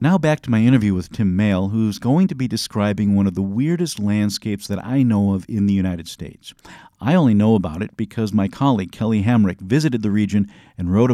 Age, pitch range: 50-69, 95-125 Hz